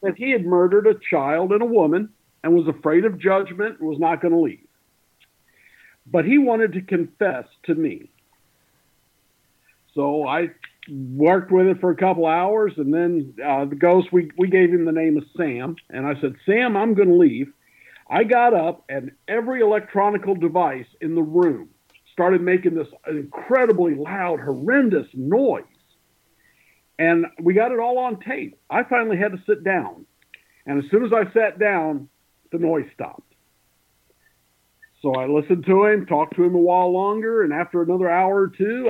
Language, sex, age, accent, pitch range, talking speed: English, male, 50-69, American, 155-215 Hz, 175 wpm